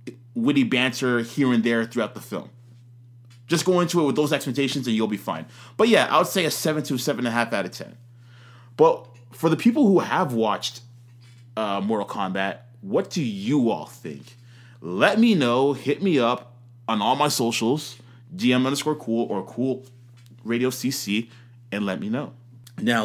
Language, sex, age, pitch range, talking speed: English, male, 20-39, 120-135 Hz, 185 wpm